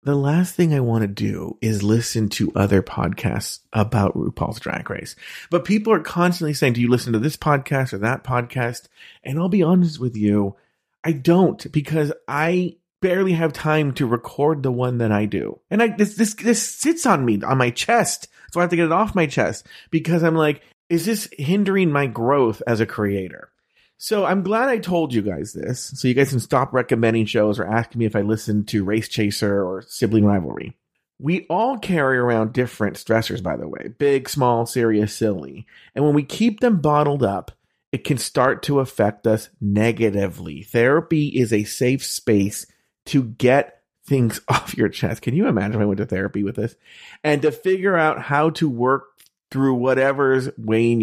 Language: English